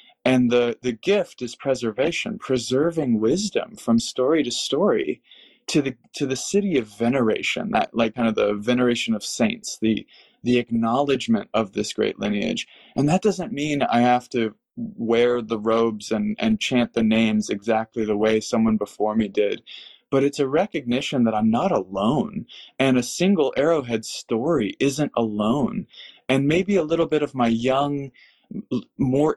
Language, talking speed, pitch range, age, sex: English, 165 wpm, 115-145 Hz, 20-39, male